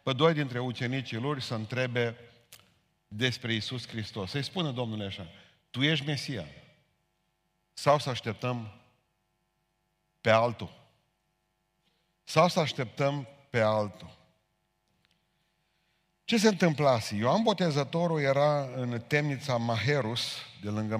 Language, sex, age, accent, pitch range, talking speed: Romanian, male, 50-69, native, 115-160 Hz, 110 wpm